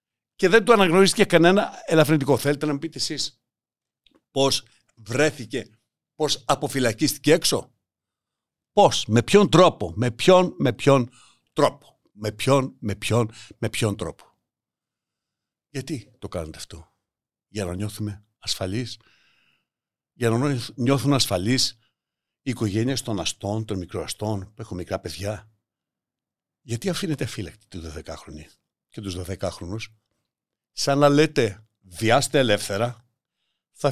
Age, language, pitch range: 60-79, Greek, 110-155 Hz